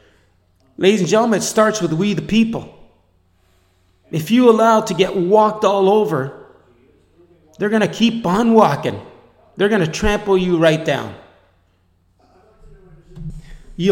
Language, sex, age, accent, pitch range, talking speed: English, male, 30-49, American, 155-205 Hz, 135 wpm